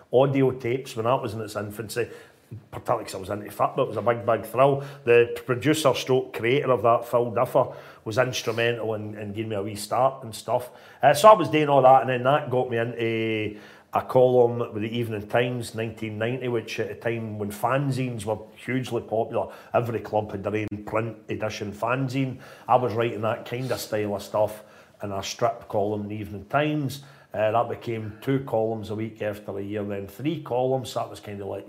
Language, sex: English, male